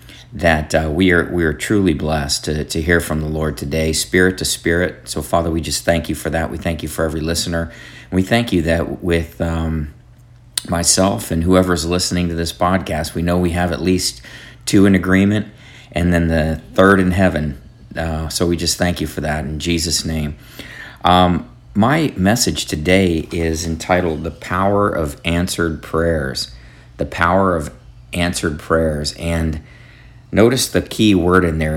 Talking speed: 180 wpm